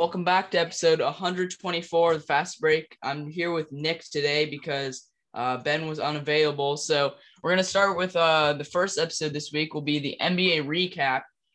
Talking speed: 185 wpm